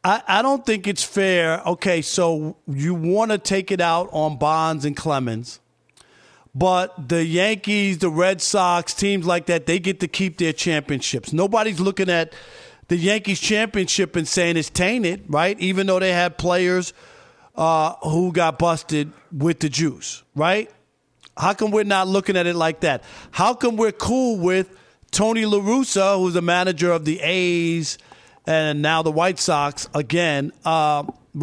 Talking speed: 165 wpm